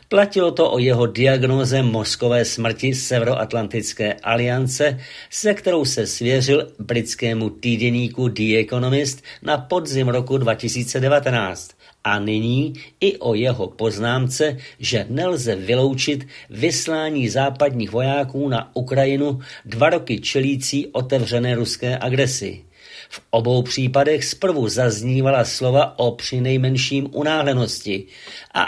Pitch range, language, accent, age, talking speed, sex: 120-140 Hz, Czech, native, 50-69, 110 wpm, male